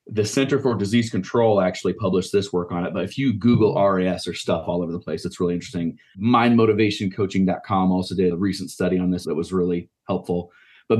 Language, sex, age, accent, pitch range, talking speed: English, male, 30-49, American, 95-120 Hz, 205 wpm